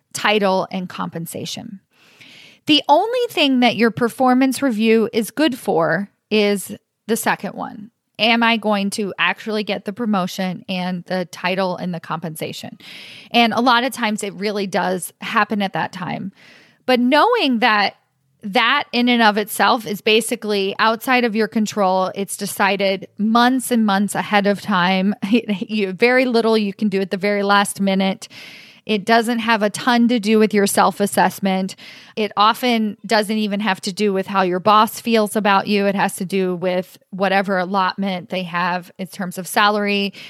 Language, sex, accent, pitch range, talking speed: English, female, American, 190-230 Hz, 165 wpm